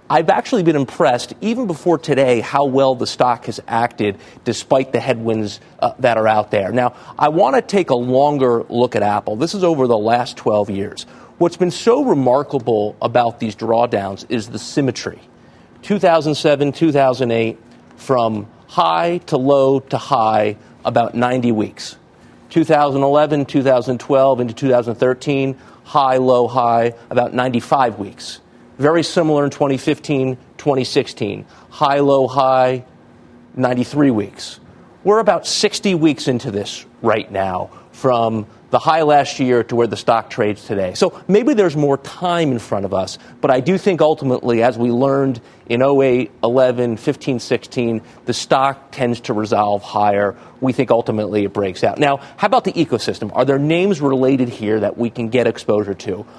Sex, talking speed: male, 155 wpm